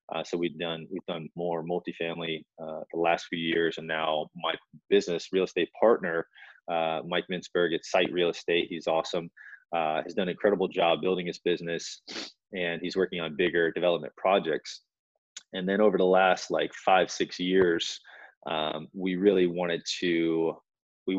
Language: English